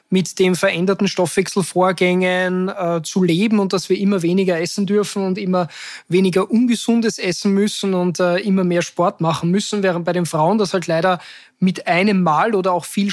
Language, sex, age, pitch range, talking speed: German, male, 20-39, 175-200 Hz, 180 wpm